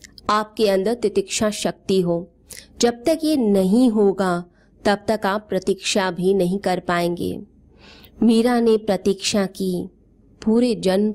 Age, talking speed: 20-39, 130 wpm